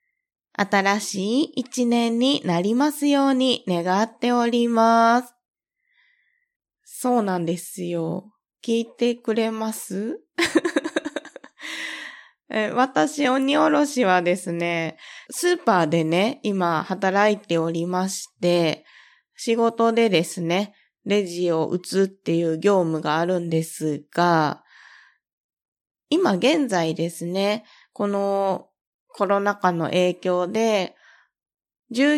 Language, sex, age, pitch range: Japanese, female, 20-39, 175-245 Hz